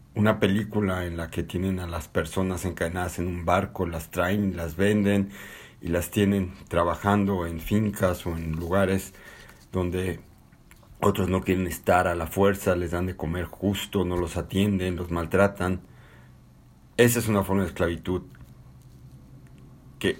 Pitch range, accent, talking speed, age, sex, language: 90-105 Hz, Mexican, 150 wpm, 50-69, male, Spanish